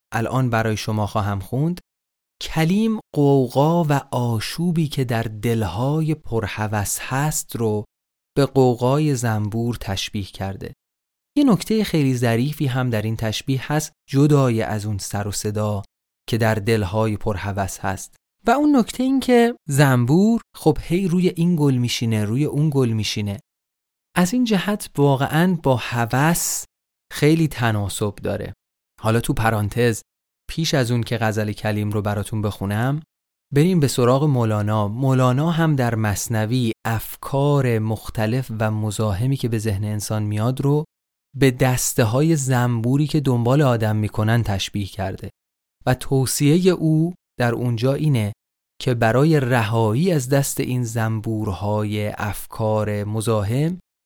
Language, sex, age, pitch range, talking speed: Persian, male, 30-49, 105-145 Hz, 130 wpm